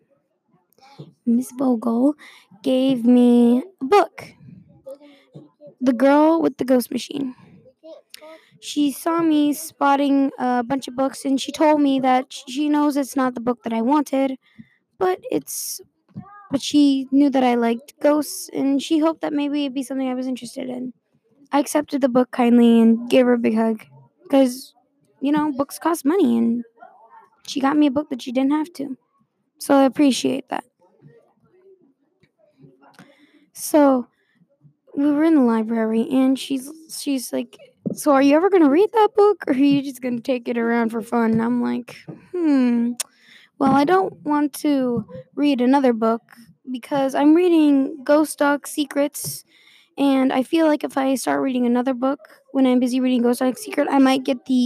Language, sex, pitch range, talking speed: English, female, 245-295 Hz, 170 wpm